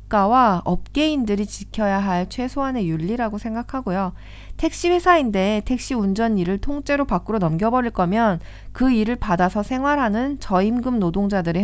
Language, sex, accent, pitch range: Korean, female, native, 195-265 Hz